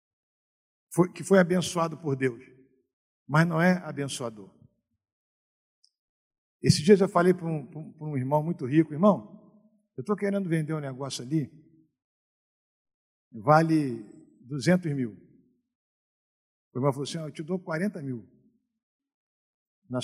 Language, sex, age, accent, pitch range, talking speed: Portuguese, male, 50-69, Brazilian, 130-210 Hz, 125 wpm